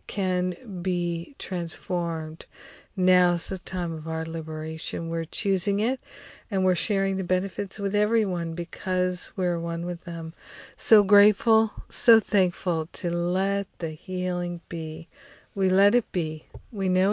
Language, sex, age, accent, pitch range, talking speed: English, female, 50-69, American, 170-205 Hz, 140 wpm